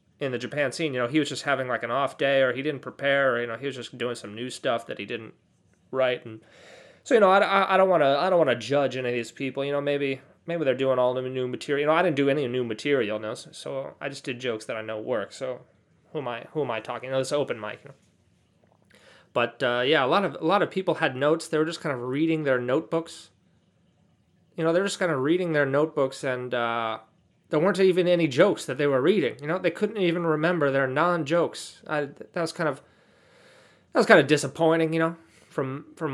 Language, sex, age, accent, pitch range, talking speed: English, male, 30-49, American, 130-165 Hz, 260 wpm